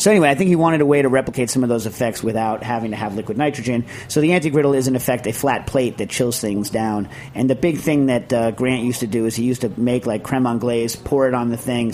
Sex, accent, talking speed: male, American, 280 wpm